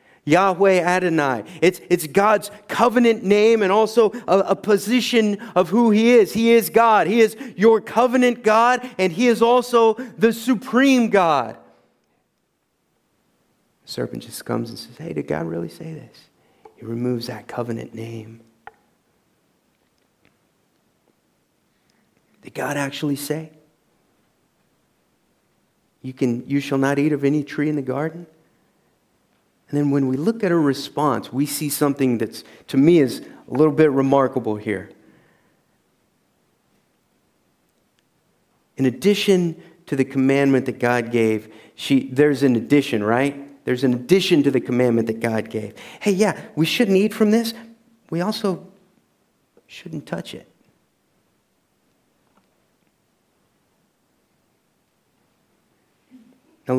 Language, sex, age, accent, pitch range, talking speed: English, male, 40-59, American, 130-215 Hz, 125 wpm